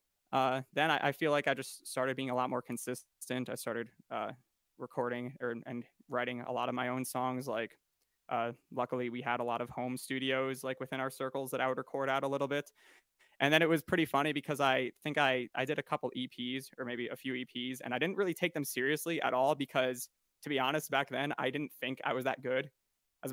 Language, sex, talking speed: English, male, 235 wpm